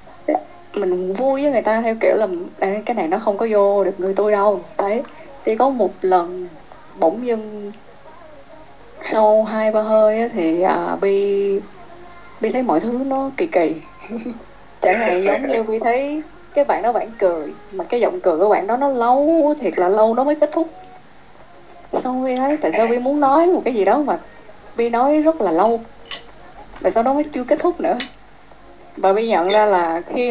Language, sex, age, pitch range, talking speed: Vietnamese, female, 20-39, 200-270 Hz, 195 wpm